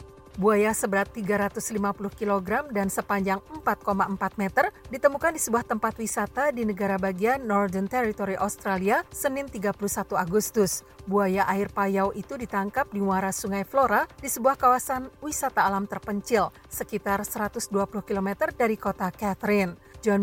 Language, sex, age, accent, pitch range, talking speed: Indonesian, female, 50-69, native, 200-245 Hz, 130 wpm